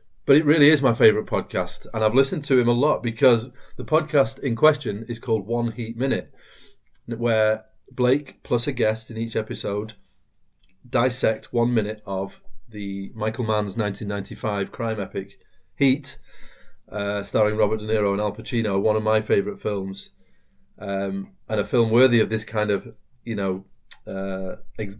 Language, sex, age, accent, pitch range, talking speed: English, male, 30-49, British, 105-130 Hz, 165 wpm